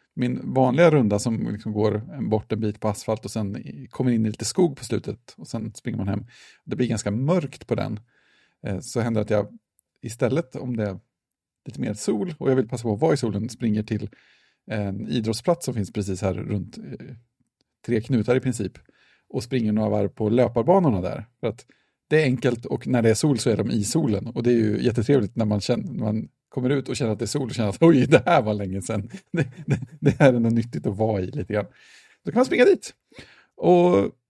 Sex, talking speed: male, 225 wpm